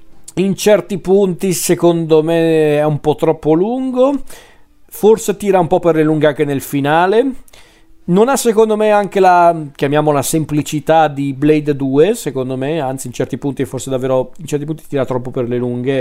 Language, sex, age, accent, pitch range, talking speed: Italian, male, 40-59, native, 125-155 Hz, 175 wpm